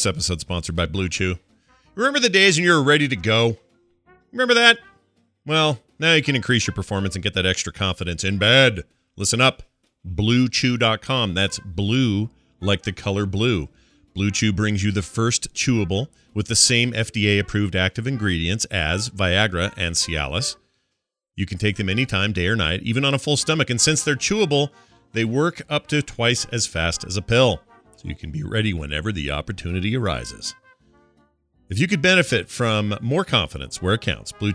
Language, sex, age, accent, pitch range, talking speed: English, male, 40-59, American, 95-125 Hz, 180 wpm